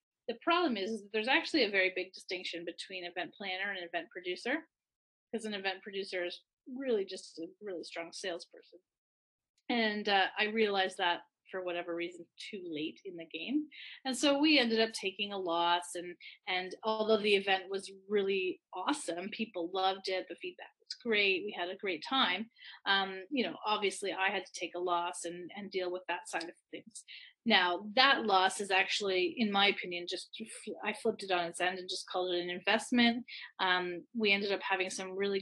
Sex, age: female, 30-49